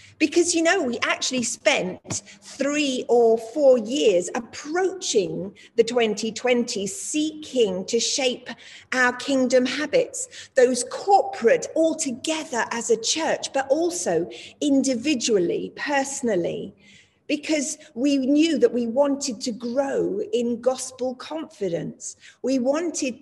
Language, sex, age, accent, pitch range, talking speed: English, female, 40-59, British, 235-300 Hz, 110 wpm